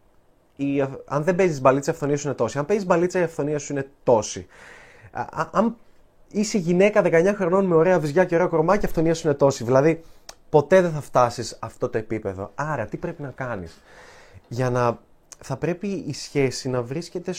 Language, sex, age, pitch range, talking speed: Greek, male, 20-39, 125-160 Hz, 190 wpm